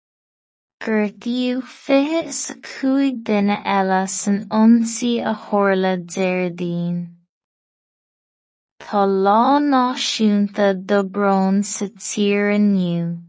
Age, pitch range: 20-39, 195-230 Hz